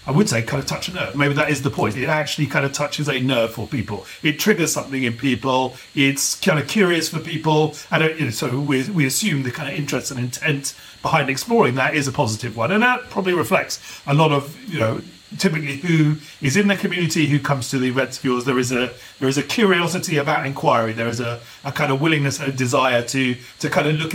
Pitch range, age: 130-165 Hz, 40-59